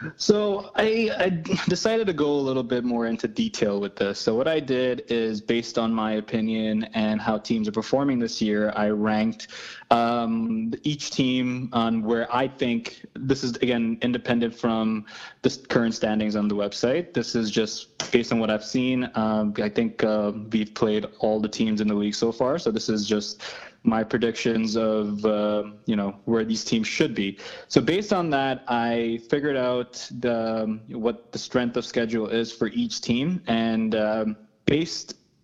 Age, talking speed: 20-39, 180 wpm